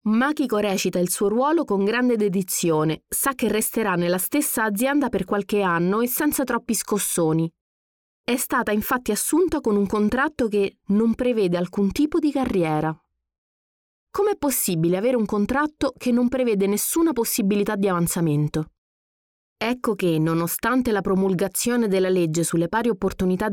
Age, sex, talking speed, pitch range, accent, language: 30-49, female, 145 wpm, 180-245 Hz, native, Italian